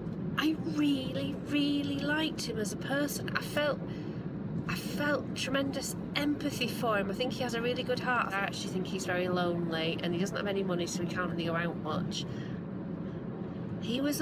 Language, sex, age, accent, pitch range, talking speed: English, female, 40-59, British, 180-235 Hz, 190 wpm